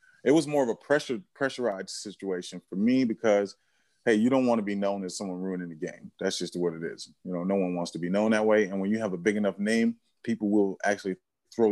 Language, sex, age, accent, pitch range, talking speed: English, male, 30-49, American, 95-115 Hz, 255 wpm